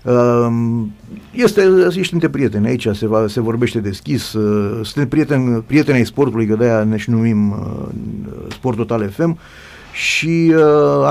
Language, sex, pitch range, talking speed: Romanian, male, 110-145 Hz, 135 wpm